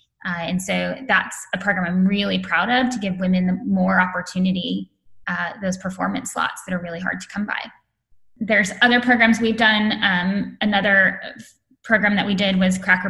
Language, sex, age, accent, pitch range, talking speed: English, female, 10-29, American, 180-210 Hz, 180 wpm